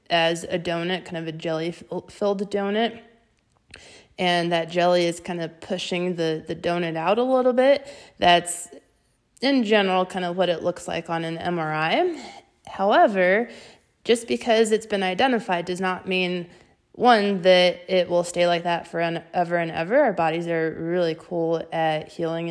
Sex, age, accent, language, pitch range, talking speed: female, 20-39, American, English, 170-205 Hz, 165 wpm